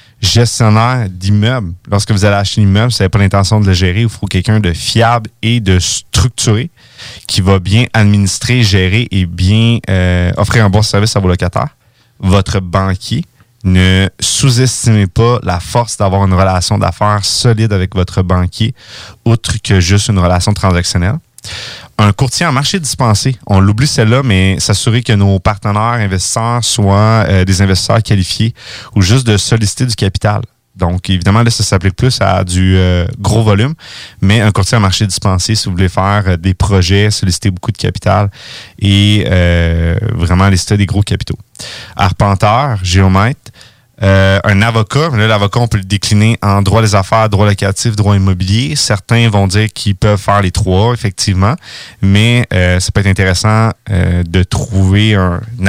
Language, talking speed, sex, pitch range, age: French, 170 wpm, male, 95-115 Hz, 30-49